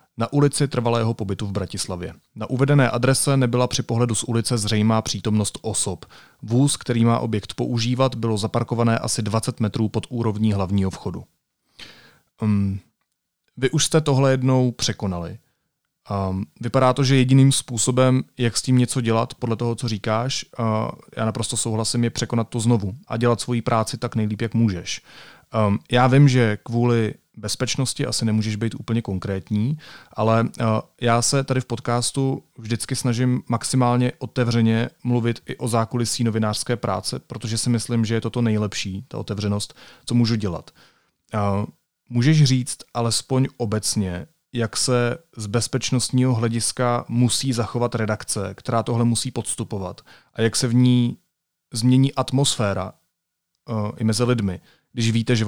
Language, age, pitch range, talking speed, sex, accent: Czech, 30-49, 110-125 Hz, 145 wpm, male, native